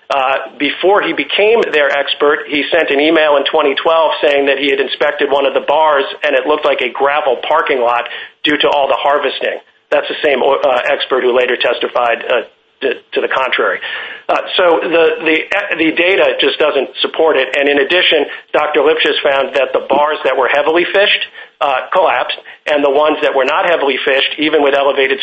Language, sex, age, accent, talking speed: English, male, 50-69, American, 195 wpm